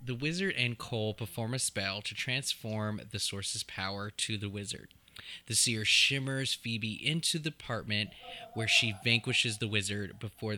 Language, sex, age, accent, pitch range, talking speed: English, male, 20-39, American, 105-130 Hz, 160 wpm